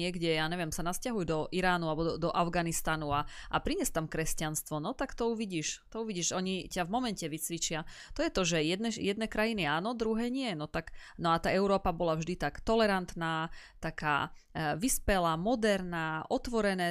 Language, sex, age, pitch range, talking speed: Slovak, female, 30-49, 160-200 Hz, 180 wpm